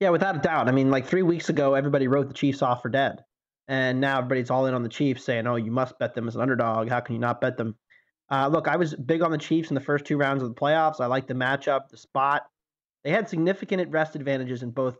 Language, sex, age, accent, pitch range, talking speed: English, male, 30-49, American, 130-155 Hz, 275 wpm